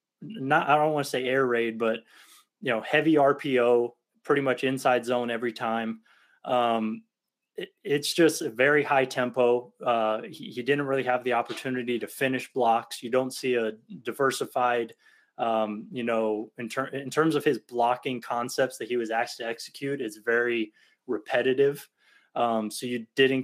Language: English